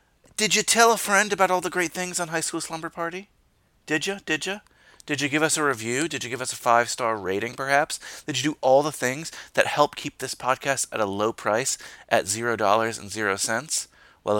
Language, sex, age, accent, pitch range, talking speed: English, male, 30-49, American, 110-180 Hz, 215 wpm